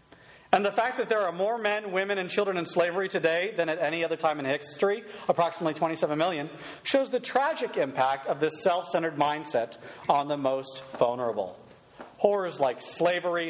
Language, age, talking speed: English, 40-59, 175 wpm